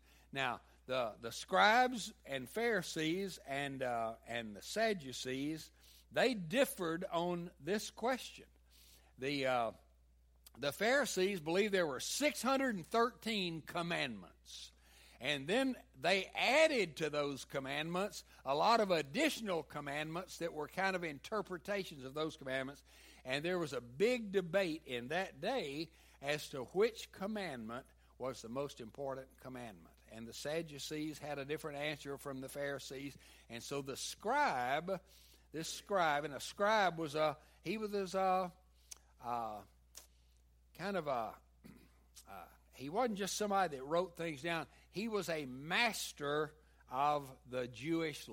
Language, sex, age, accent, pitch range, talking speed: English, male, 60-79, American, 120-195 Hz, 135 wpm